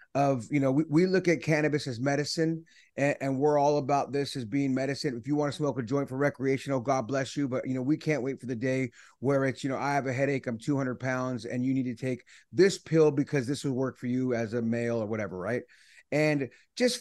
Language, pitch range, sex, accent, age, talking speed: English, 135-160 Hz, male, American, 30-49, 255 wpm